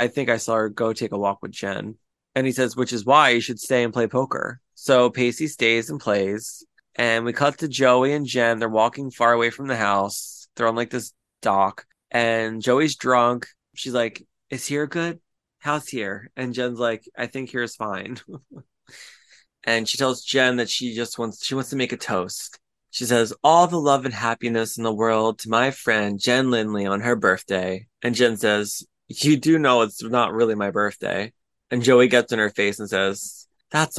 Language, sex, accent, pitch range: English, male, American, 110-135 Hz